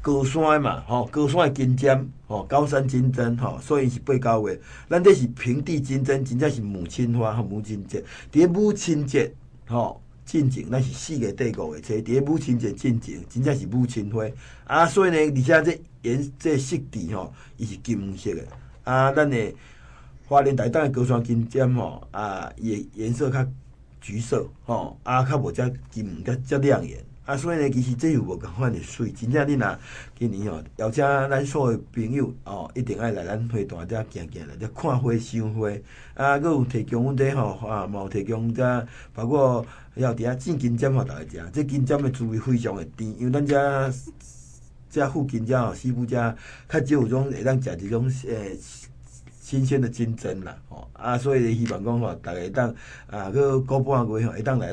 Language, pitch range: Chinese, 115-135 Hz